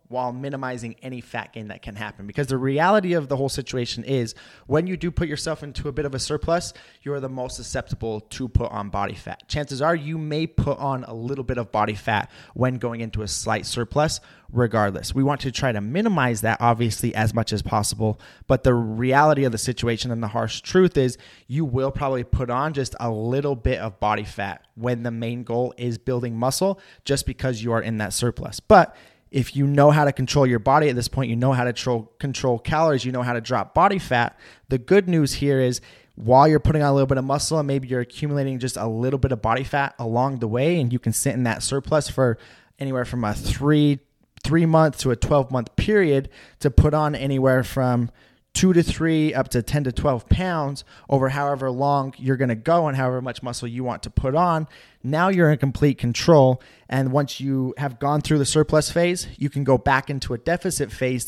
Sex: male